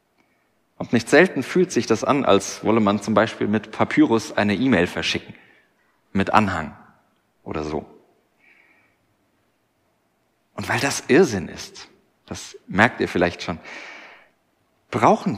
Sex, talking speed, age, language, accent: male, 125 wpm, 40-59, German, German